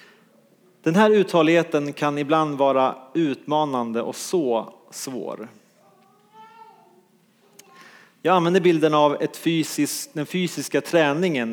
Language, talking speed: English, 100 wpm